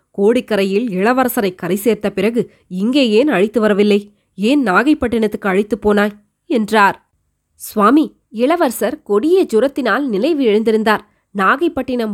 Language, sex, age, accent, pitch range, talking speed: Tamil, female, 20-39, native, 205-285 Hz, 105 wpm